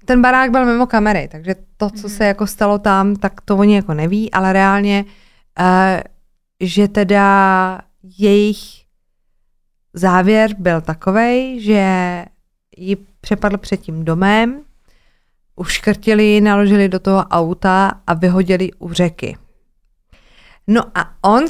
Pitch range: 180-210 Hz